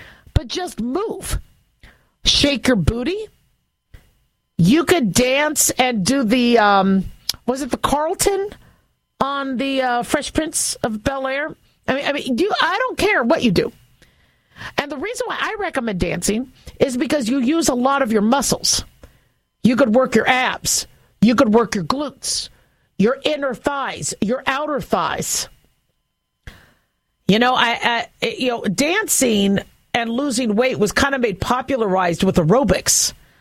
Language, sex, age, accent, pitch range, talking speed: English, female, 50-69, American, 220-285 Hz, 155 wpm